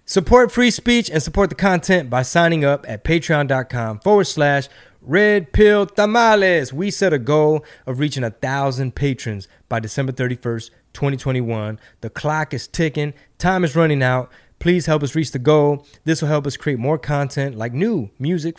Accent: American